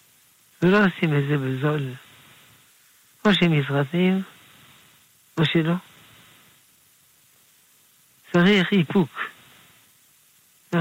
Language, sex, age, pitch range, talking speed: Hebrew, male, 60-79, 145-170 Hz, 70 wpm